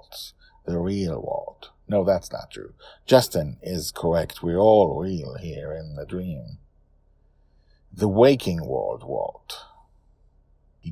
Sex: male